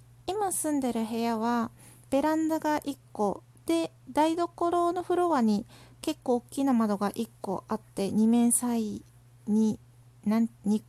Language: Japanese